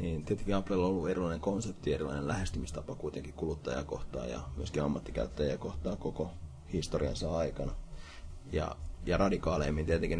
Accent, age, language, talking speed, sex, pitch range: native, 30-49, Finnish, 130 wpm, male, 80-105 Hz